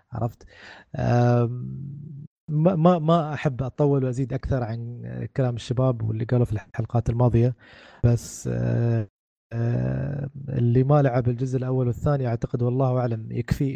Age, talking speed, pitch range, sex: 20-39, 115 wpm, 115-145 Hz, male